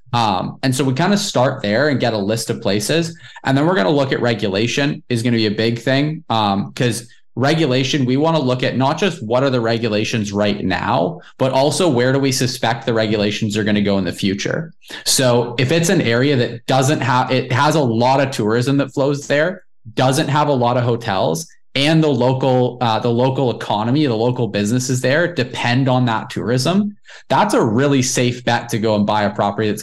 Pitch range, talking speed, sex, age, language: 115-140 Hz, 220 wpm, male, 20-39, English